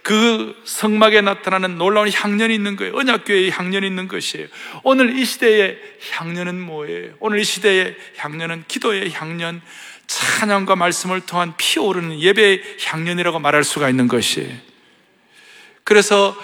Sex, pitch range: male, 190-250 Hz